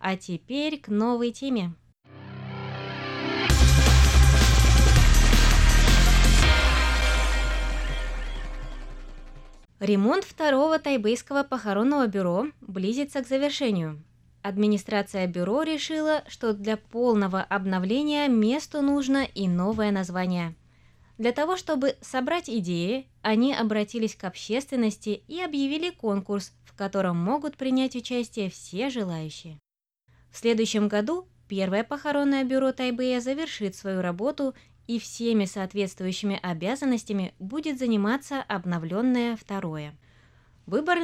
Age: 20-39